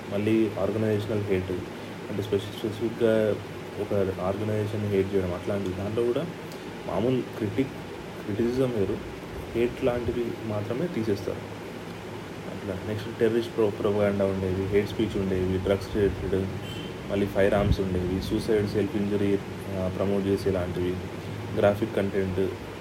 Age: 30-49